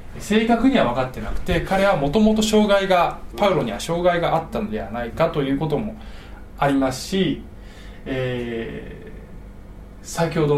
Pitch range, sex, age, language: 110-175 Hz, male, 20-39, Japanese